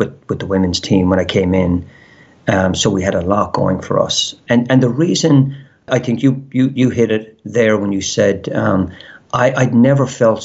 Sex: male